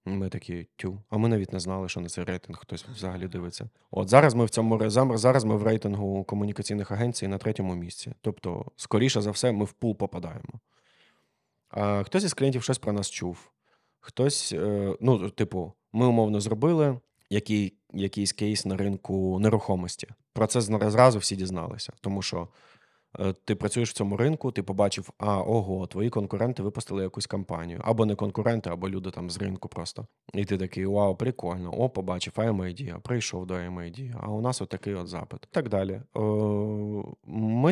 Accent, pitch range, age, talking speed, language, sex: native, 95-115 Hz, 20-39, 175 wpm, Ukrainian, male